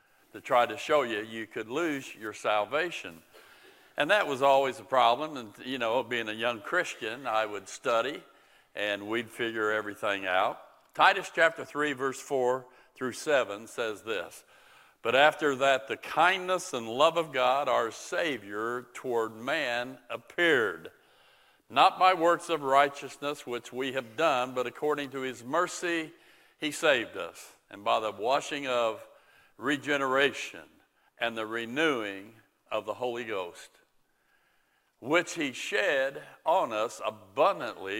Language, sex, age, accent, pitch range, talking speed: English, male, 50-69, American, 115-150 Hz, 140 wpm